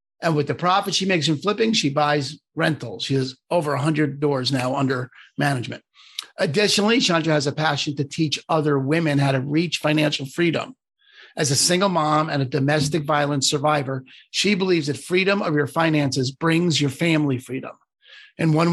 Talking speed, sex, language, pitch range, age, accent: 175 wpm, male, English, 140-175 Hz, 50-69, American